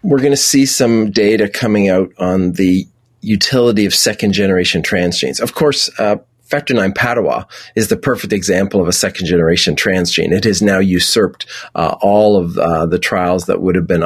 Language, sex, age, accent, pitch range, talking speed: English, male, 30-49, American, 95-115 Hz, 190 wpm